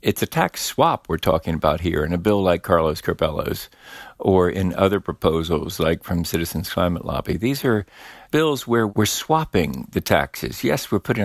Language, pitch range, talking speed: English, 90-110 Hz, 180 wpm